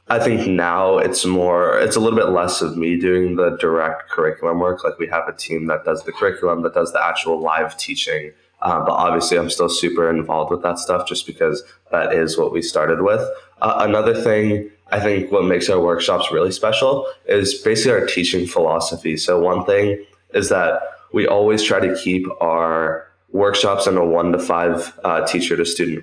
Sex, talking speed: male, 200 wpm